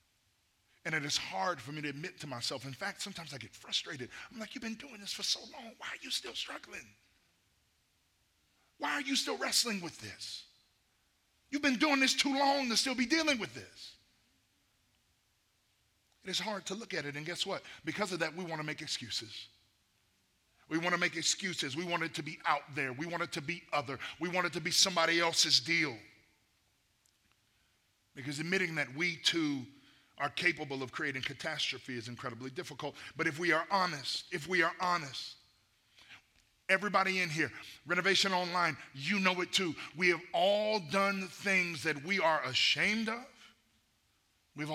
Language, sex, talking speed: English, male, 180 wpm